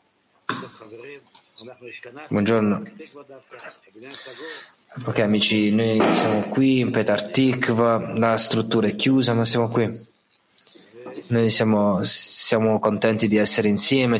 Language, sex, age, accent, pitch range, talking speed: Italian, male, 20-39, native, 110-125 Hz, 95 wpm